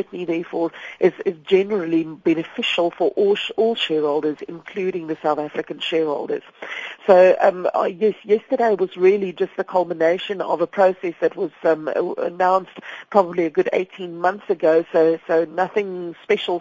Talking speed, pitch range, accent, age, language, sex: 150 wpm, 165-205 Hz, British, 40-59, English, female